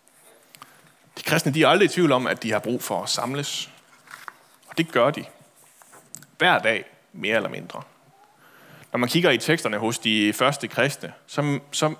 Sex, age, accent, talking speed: male, 30-49, native, 175 wpm